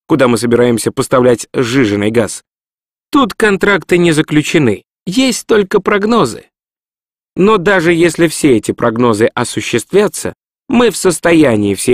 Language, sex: Russian, male